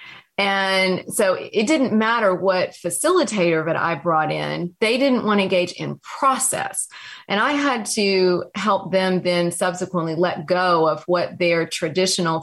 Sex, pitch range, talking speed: female, 165-205 Hz, 155 wpm